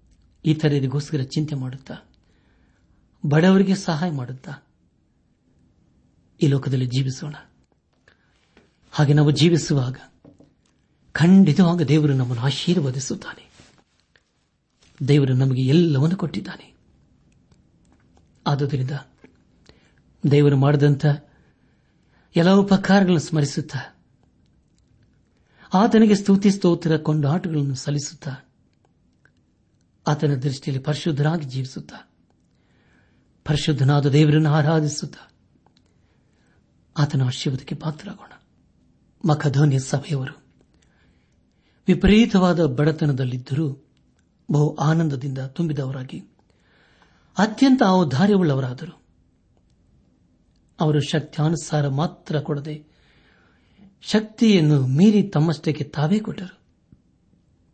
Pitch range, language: 135-170 Hz, Kannada